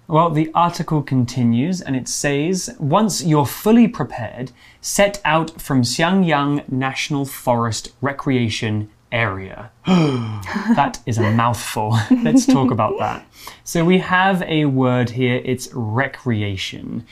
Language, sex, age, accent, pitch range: Chinese, male, 20-39, British, 125-180 Hz